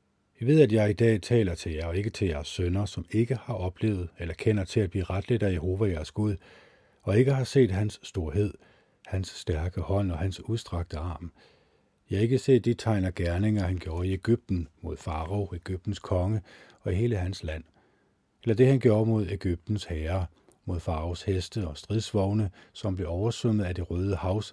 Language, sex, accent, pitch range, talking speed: Danish, male, native, 90-110 Hz, 190 wpm